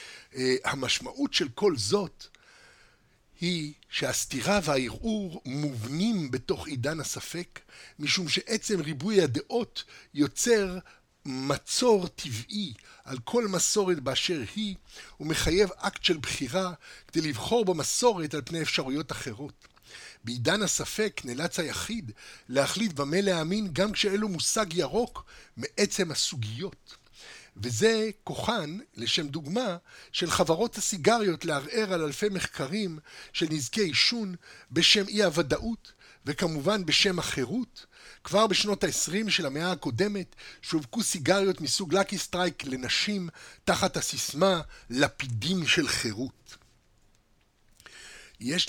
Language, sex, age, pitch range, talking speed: Hebrew, male, 60-79, 145-205 Hz, 105 wpm